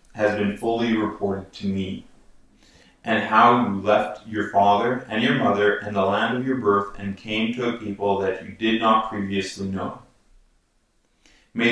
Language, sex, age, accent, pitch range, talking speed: English, male, 30-49, American, 100-120 Hz, 170 wpm